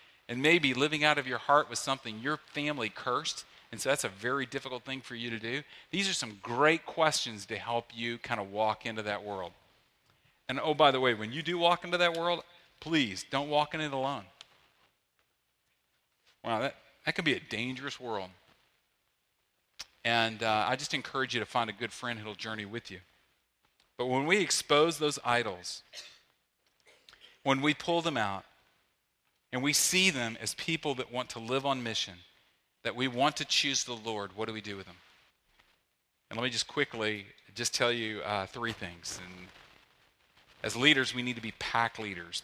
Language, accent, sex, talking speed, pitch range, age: English, American, male, 190 wpm, 110-140 Hz, 40-59